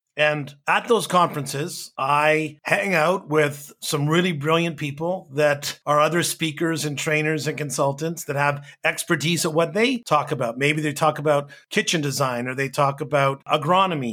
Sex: male